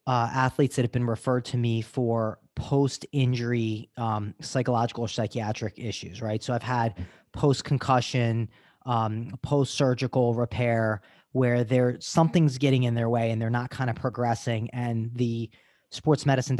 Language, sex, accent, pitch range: English, male, American, 115-135 Hz